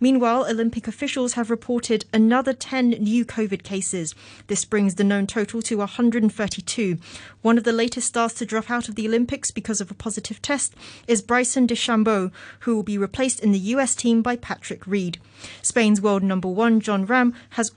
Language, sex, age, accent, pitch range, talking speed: English, female, 30-49, British, 145-225 Hz, 180 wpm